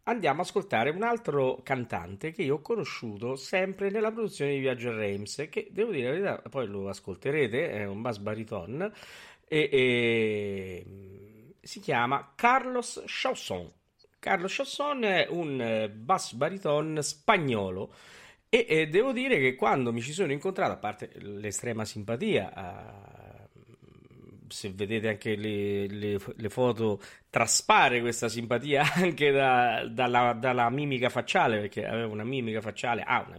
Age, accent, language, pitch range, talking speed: 40-59, native, Italian, 105-140 Hz, 145 wpm